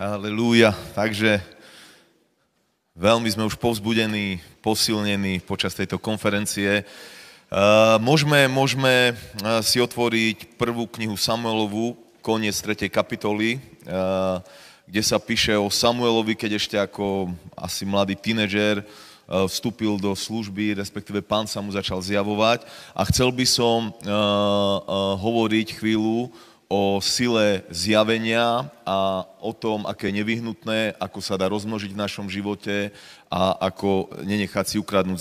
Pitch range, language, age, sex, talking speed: 100-115 Hz, Slovak, 30-49, male, 110 wpm